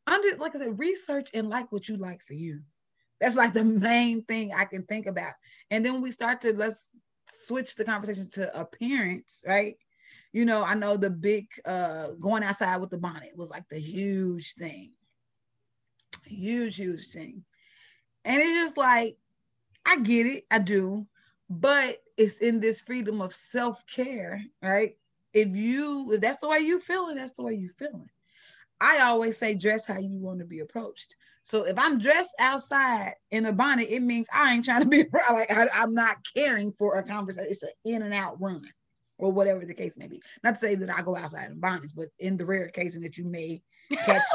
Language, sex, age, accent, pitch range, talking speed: English, female, 30-49, American, 190-250 Hz, 200 wpm